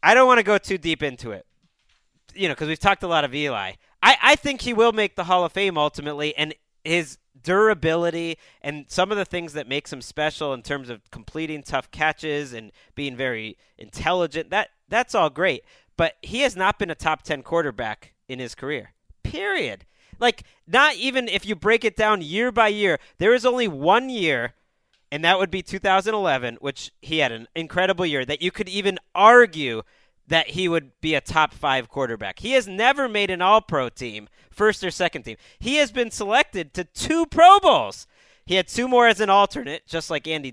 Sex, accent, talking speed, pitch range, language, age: male, American, 205 wpm, 150-215 Hz, English, 30-49